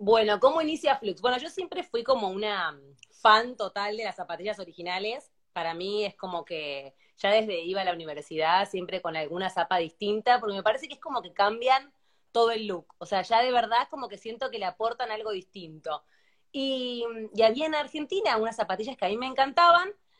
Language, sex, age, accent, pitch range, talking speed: Spanish, female, 20-39, Argentinian, 180-250 Hz, 200 wpm